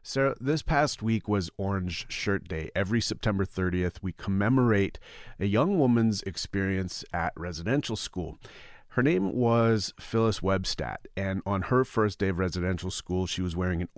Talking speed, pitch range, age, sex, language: 160 wpm, 90-110 Hz, 40-59, male, English